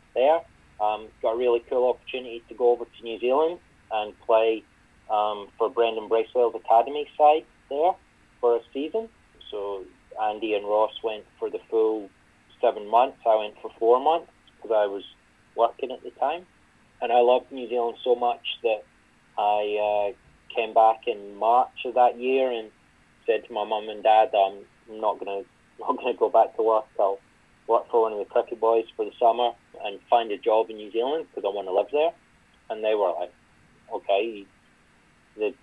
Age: 30-49